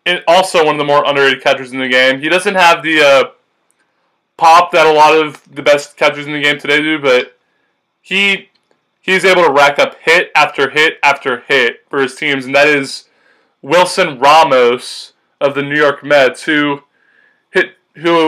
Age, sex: 20-39, male